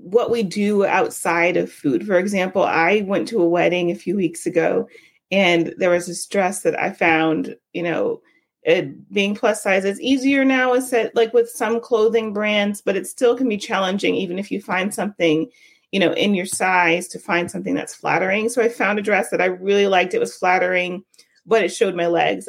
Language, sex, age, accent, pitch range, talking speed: English, female, 30-49, American, 185-240 Hz, 210 wpm